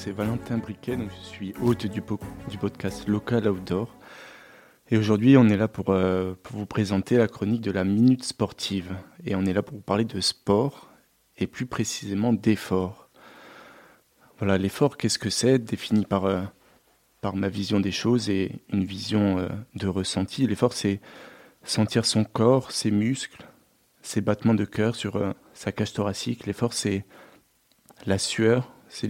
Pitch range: 100-115 Hz